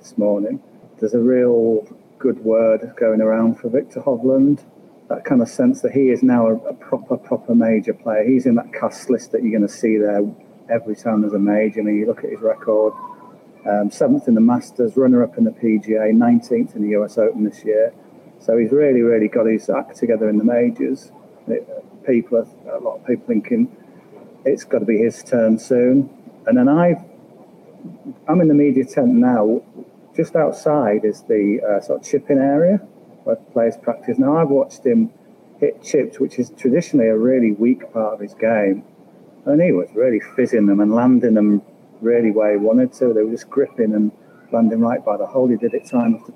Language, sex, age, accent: English, male, 40-59, British